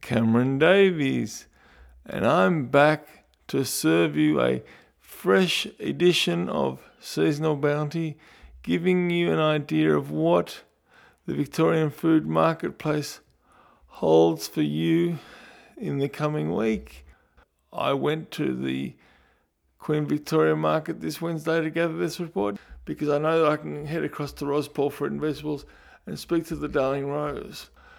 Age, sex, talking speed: 50-69, male, 135 wpm